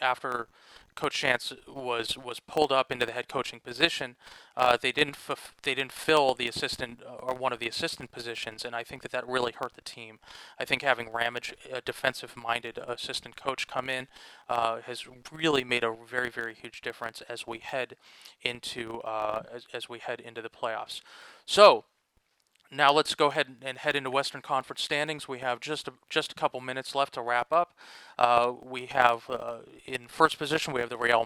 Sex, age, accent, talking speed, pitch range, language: male, 30-49, American, 195 wpm, 120-140 Hz, English